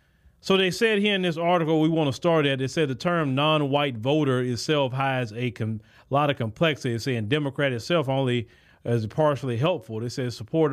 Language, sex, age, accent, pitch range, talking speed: English, male, 30-49, American, 120-150 Hz, 205 wpm